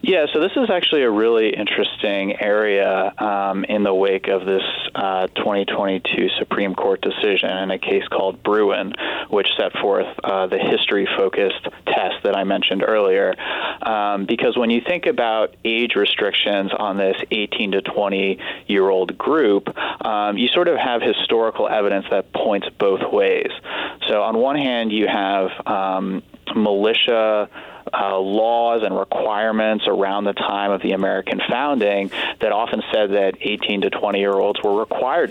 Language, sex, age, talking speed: English, male, 30-49, 155 wpm